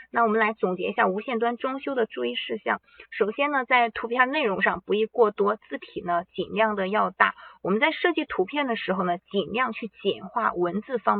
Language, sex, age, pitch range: Chinese, female, 20-39, 195-260 Hz